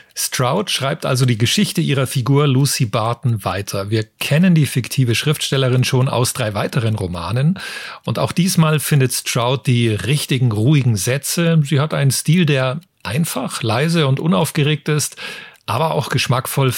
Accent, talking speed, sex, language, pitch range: German, 150 wpm, male, German, 120-155 Hz